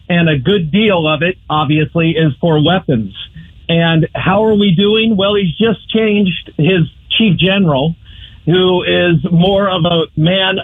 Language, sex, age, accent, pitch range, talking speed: English, male, 50-69, American, 165-225 Hz, 160 wpm